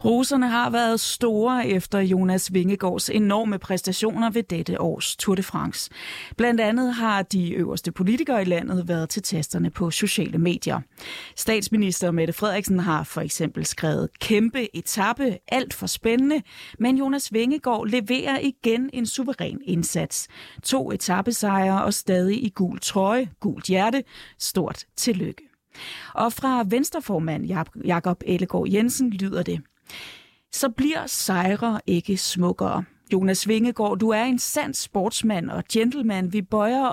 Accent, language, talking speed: native, Danish, 135 wpm